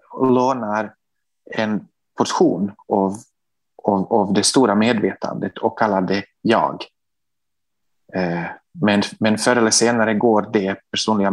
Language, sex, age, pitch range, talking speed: Swedish, male, 30-49, 105-140 Hz, 105 wpm